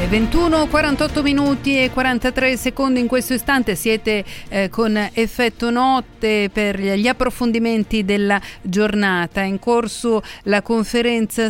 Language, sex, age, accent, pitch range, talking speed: Italian, female, 40-59, native, 195-225 Hz, 115 wpm